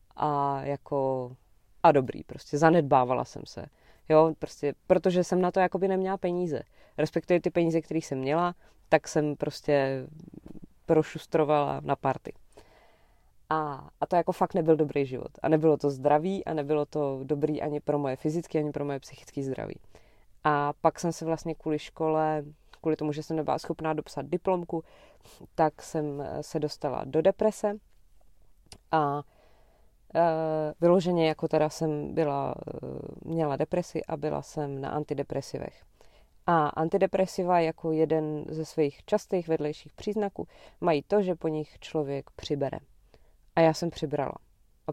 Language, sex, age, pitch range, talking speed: Slovak, female, 20-39, 150-170 Hz, 150 wpm